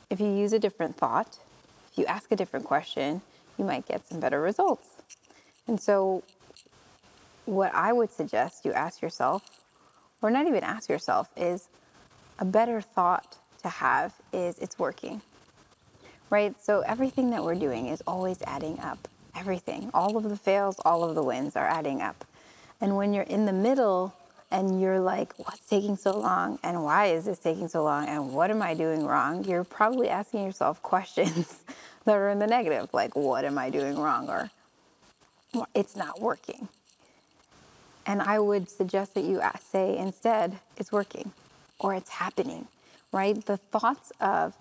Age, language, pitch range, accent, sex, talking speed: 20-39, English, 185-220 Hz, American, female, 170 wpm